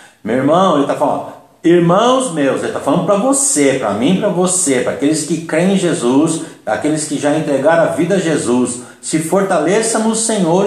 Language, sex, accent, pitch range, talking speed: Portuguese, male, Brazilian, 135-165 Hz, 190 wpm